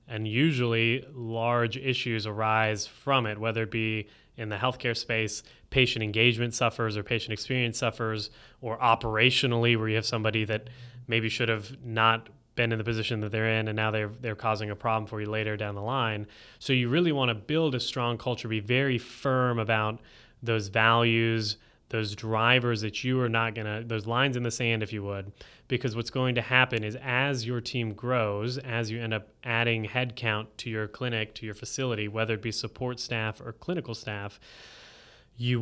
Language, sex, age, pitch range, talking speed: English, male, 20-39, 110-125 Hz, 190 wpm